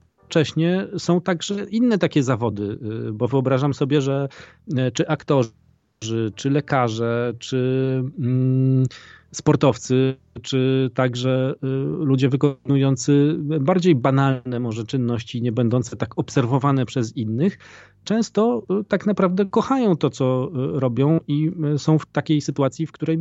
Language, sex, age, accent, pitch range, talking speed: Polish, male, 40-59, native, 120-150 Hz, 115 wpm